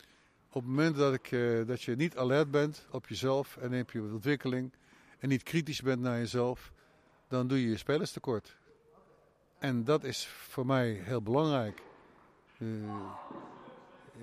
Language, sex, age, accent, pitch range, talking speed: Dutch, male, 50-69, Dutch, 110-135 Hz, 155 wpm